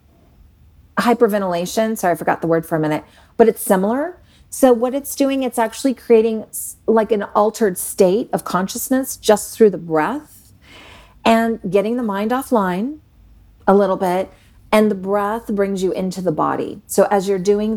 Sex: female